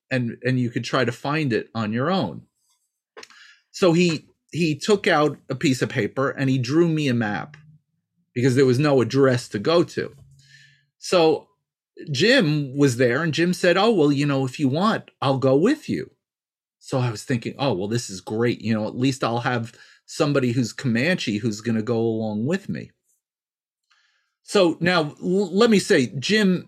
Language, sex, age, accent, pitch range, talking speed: English, male, 40-59, American, 120-160 Hz, 190 wpm